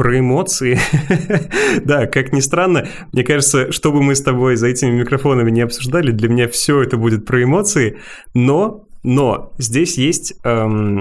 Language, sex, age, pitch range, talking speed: Russian, male, 20-39, 120-150 Hz, 160 wpm